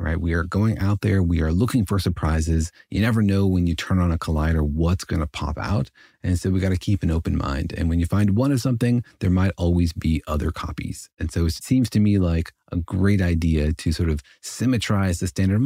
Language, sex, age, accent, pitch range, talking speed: English, male, 30-49, American, 80-105 Hz, 240 wpm